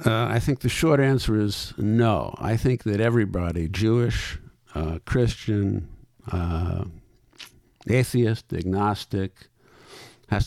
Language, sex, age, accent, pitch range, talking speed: English, male, 50-69, American, 85-110 Hz, 110 wpm